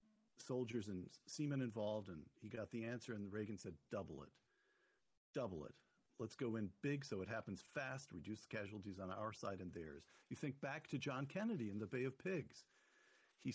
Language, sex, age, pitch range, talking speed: English, male, 50-69, 110-140 Hz, 190 wpm